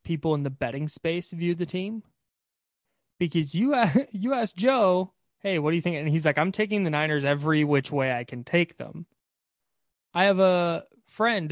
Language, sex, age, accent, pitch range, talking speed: English, male, 20-39, American, 135-175 Hz, 190 wpm